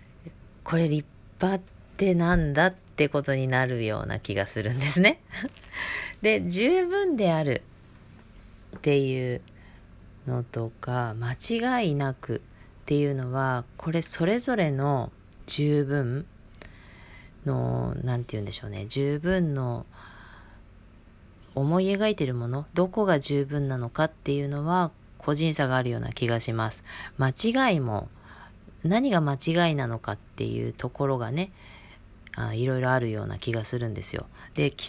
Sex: female